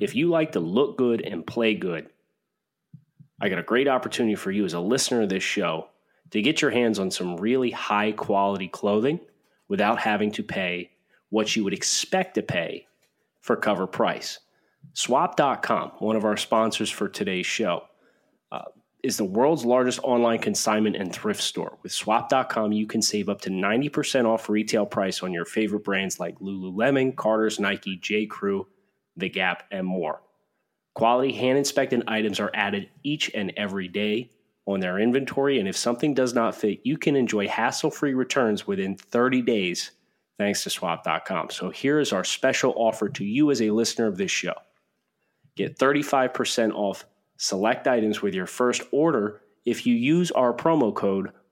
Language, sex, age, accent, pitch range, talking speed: English, male, 30-49, American, 105-130 Hz, 170 wpm